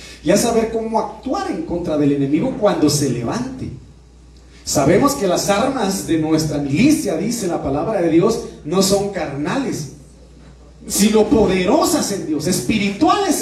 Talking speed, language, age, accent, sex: 145 wpm, Spanish, 40-59, Mexican, male